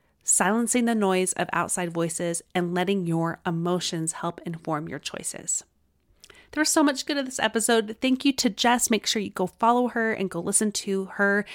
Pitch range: 185-240 Hz